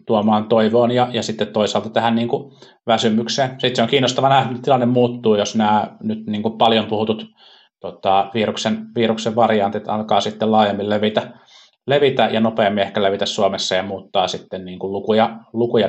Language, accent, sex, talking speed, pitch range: Finnish, native, male, 145 wpm, 100-120 Hz